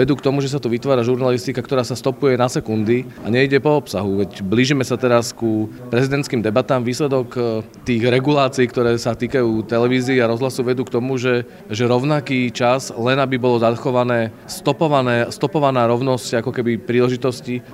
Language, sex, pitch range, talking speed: Slovak, male, 120-135 Hz, 170 wpm